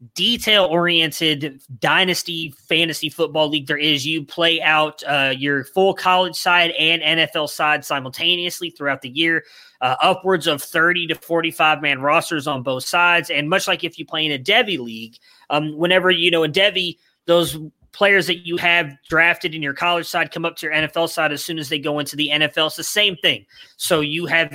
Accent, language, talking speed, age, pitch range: American, English, 195 wpm, 20-39, 150-170 Hz